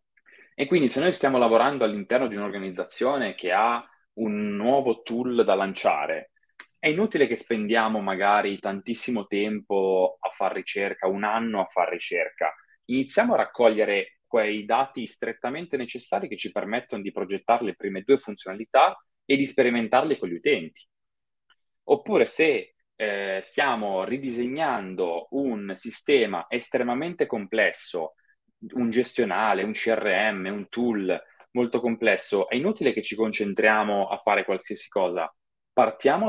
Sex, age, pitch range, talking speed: male, 20-39, 100-145 Hz, 130 wpm